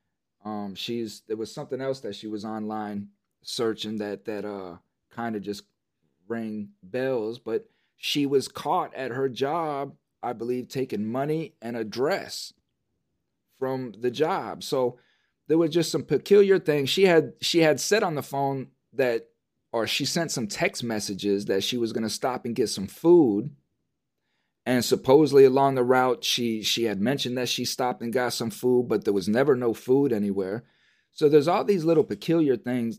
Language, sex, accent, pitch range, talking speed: English, male, American, 110-150 Hz, 175 wpm